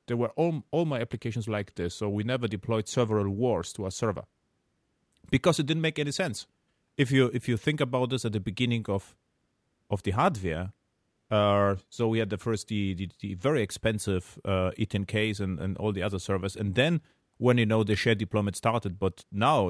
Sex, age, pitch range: male, 30-49, 100-125 Hz